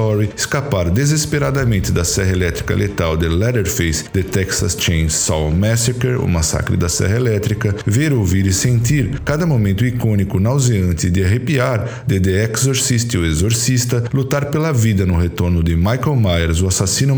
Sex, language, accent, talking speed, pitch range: male, Portuguese, Brazilian, 155 wpm, 90-120 Hz